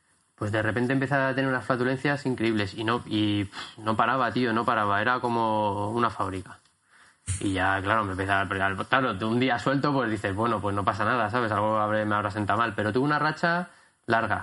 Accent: Spanish